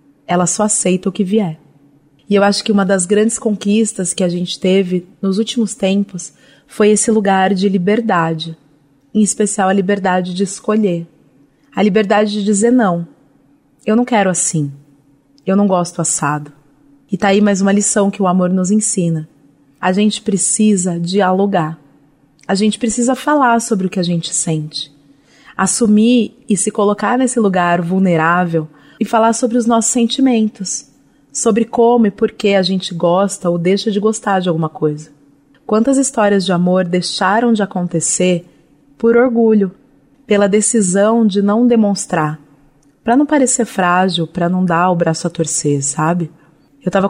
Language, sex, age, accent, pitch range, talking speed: Portuguese, female, 30-49, Brazilian, 170-210 Hz, 160 wpm